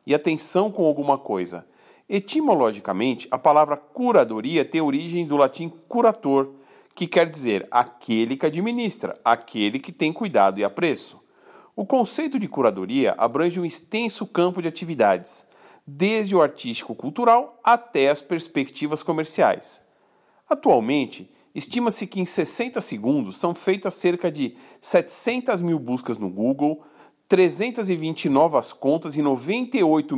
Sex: male